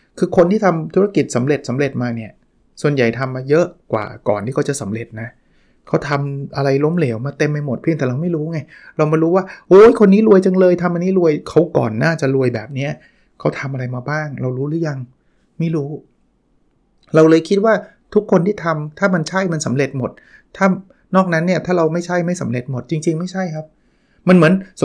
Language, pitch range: Thai, 130-170 Hz